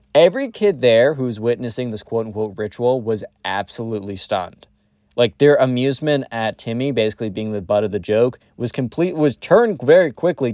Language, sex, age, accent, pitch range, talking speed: English, male, 20-39, American, 115-165 Hz, 170 wpm